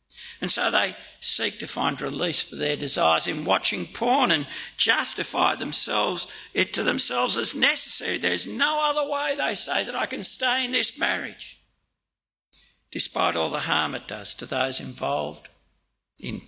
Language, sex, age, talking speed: English, male, 60-79, 160 wpm